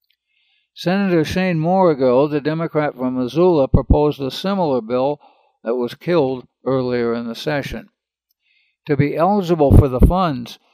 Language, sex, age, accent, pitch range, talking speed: English, male, 60-79, American, 135-165 Hz, 135 wpm